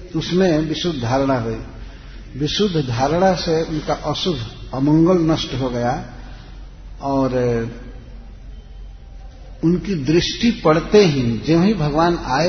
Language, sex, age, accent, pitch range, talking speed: Hindi, male, 60-79, native, 125-160 Hz, 105 wpm